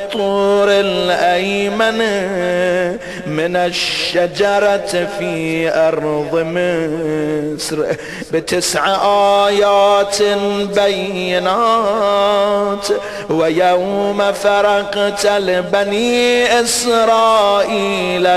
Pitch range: 175-205 Hz